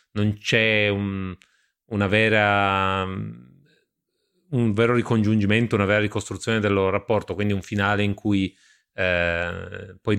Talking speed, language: 125 wpm, Italian